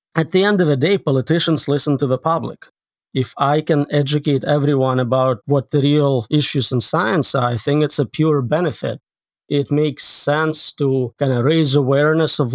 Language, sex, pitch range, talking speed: English, male, 135-155 Hz, 185 wpm